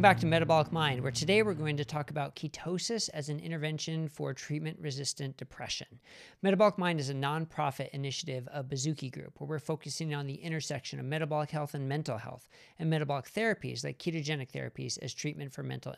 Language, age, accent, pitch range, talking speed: English, 40-59, American, 145-180 Hz, 190 wpm